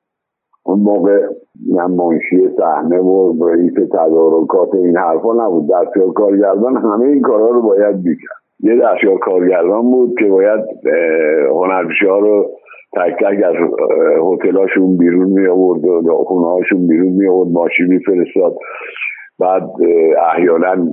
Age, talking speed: 60-79, 120 wpm